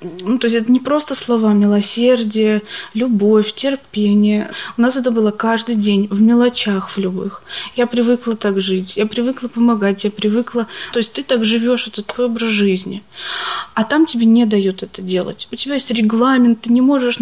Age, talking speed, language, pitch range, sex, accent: 20-39, 180 wpm, Russian, 215-245 Hz, female, native